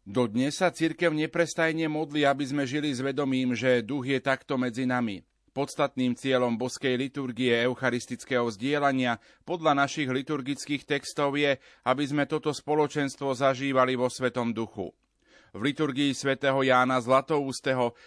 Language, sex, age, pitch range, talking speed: Slovak, male, 30-49, 125-140 Hz, 135 wpm